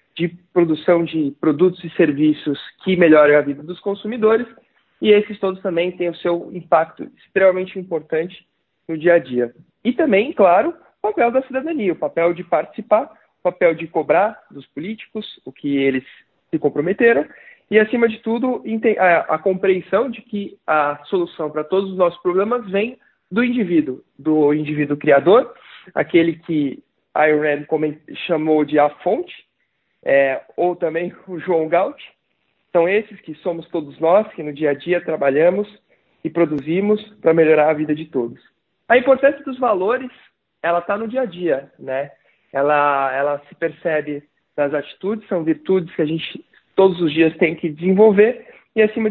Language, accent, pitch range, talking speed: Portuguese, Brazilian, 155-210 Hz, 165 wpm